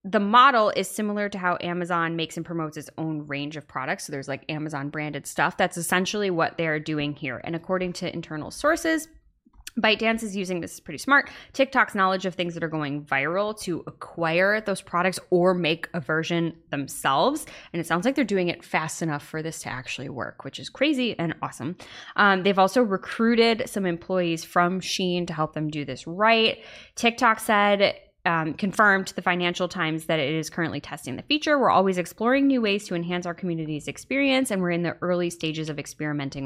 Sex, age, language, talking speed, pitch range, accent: female, 20-39, English, 200 wpm, 155-200 Hz, American